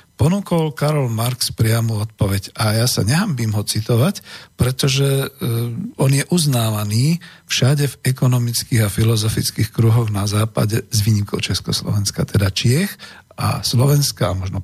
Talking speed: 130 wpm